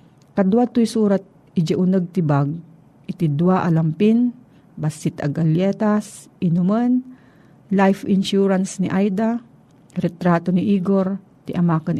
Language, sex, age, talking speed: Filipino, female, 50-69, 105 wpm